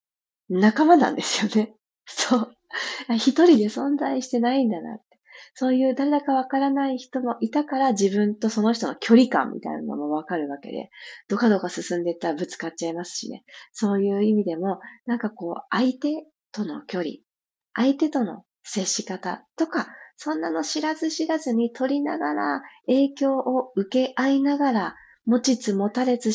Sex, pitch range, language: female, 190-265 Hz, Japanese